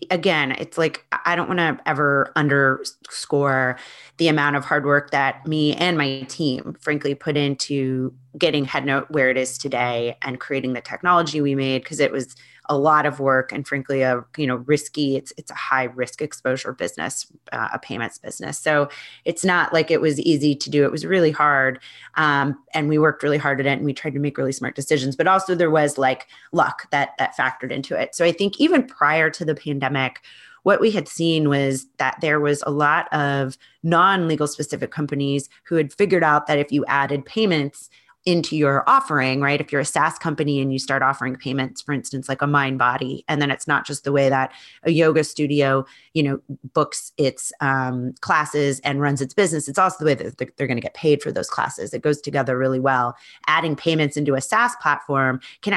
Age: 30-49